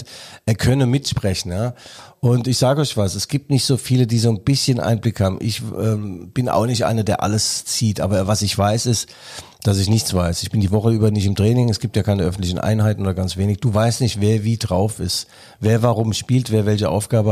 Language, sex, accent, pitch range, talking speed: German, male, German, 100-125 Hz, 235 wpm